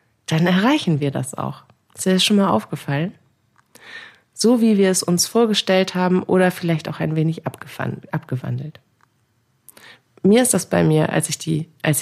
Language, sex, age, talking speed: German, female, 30-49, 165 wpm